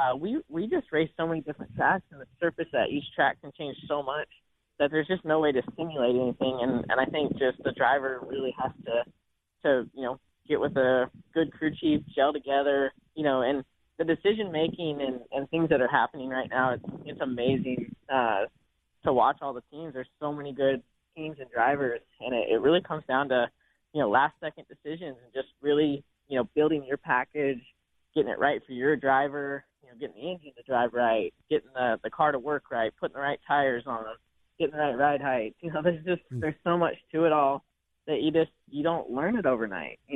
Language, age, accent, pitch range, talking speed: English, 20-39, American, 130-155 Hz, 215 wpm